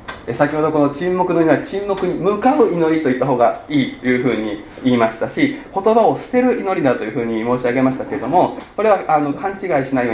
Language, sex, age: Japanese, male, 20-39